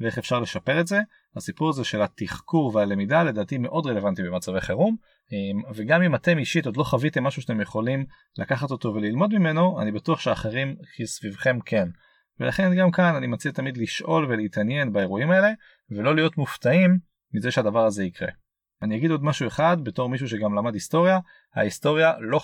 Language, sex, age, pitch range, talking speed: Hebrew, male, 30-49, 110-165 Hz, 170 wpm